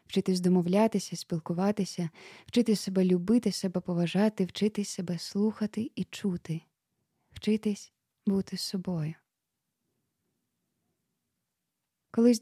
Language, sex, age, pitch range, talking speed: Ukrainian, female, 20-39, 185-215 Hz, 80 wpm